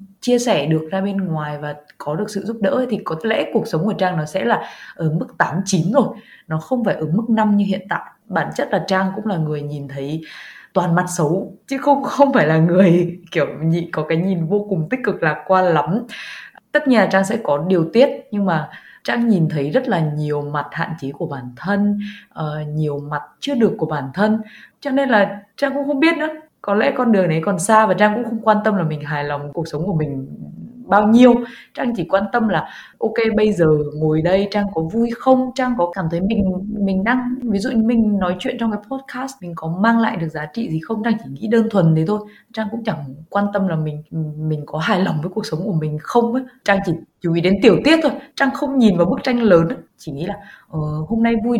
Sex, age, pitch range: female, 20-39, 165-230 Hz